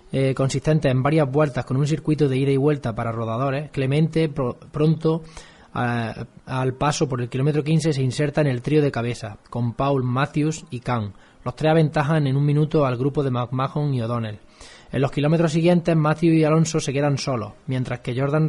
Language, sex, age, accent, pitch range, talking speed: Spanish, male, 20-39, Spanish, 125-155 Hz, 200 wpm